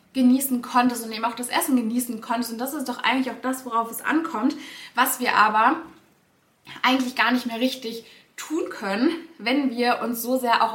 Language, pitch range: German, 220-255 Hz